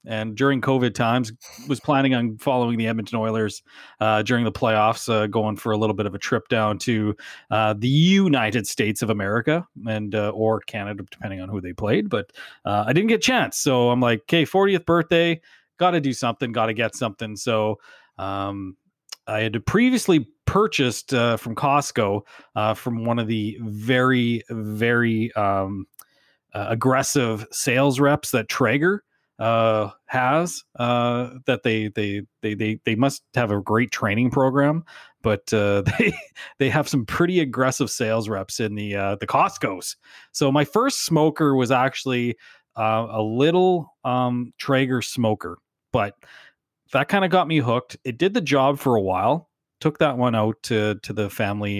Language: English